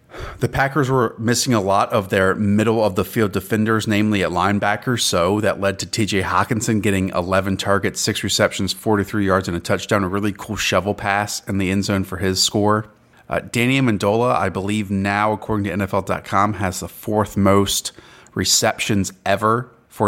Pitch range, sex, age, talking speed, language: 95-110 Hz, male, 30-49, 170 wpm, English